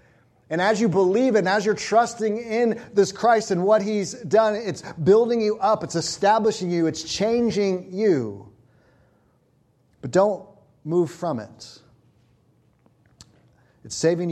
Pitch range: 130-210 Hz